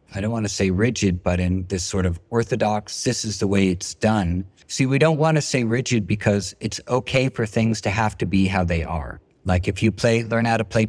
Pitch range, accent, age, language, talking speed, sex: 95-120 Hz, American, 50-69, Russian, 250 wpm, male